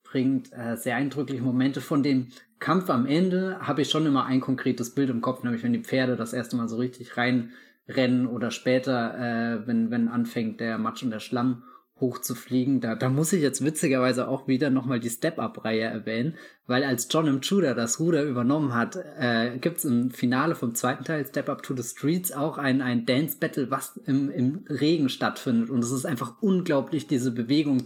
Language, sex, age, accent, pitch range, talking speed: German, male, 20-39, German, 120-145 Hz, 190 wpm